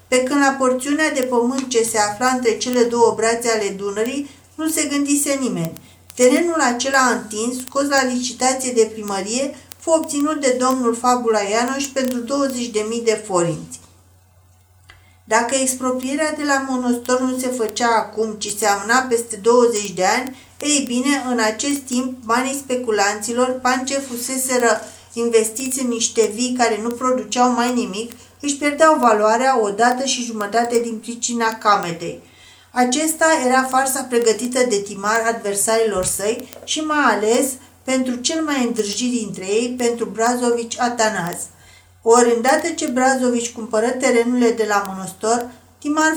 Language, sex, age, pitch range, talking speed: Romanian, female, 50-69, 220-260 Hz, 145 wpm